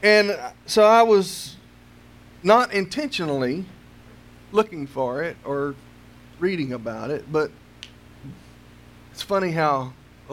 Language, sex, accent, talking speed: English, male, American, 105 wpm